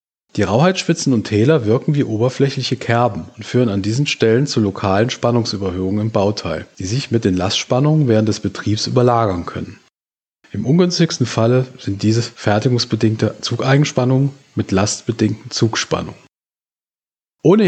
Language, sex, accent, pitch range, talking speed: German, male, German, 110-150 Hz, 130 wpm